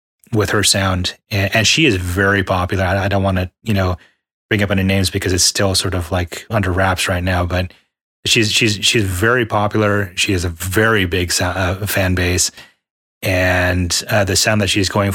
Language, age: English, 30-49